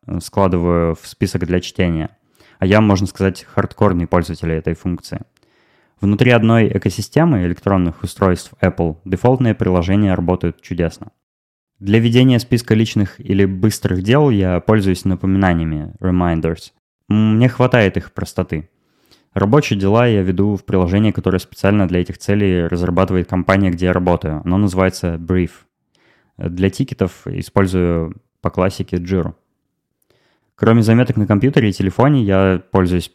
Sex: male